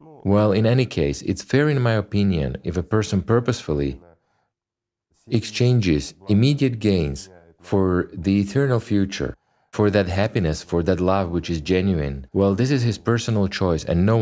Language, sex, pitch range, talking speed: English, male, 85-110 Hz, 155 wpm